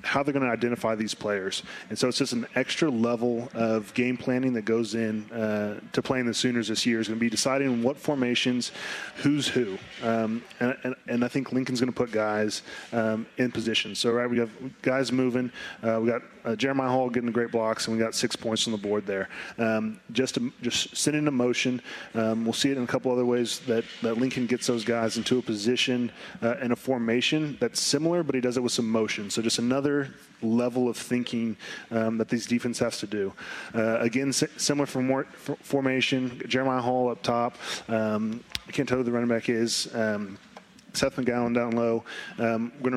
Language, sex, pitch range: English, male, 115-130 Hz